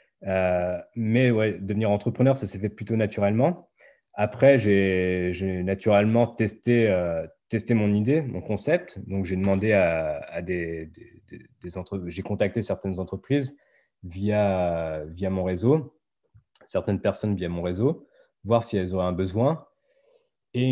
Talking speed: 150 wpm